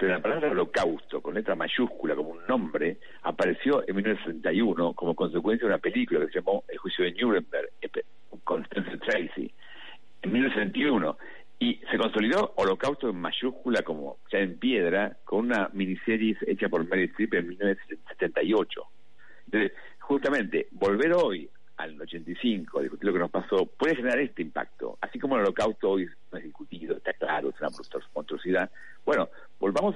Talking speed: 160 wpm